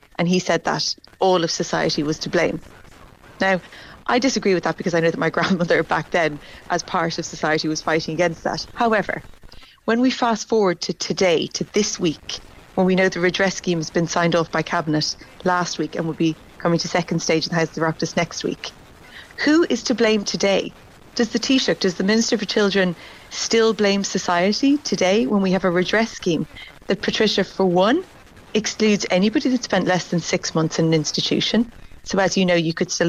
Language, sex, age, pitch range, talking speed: English, female, 30-49, 165-200 Hz, 205 wpm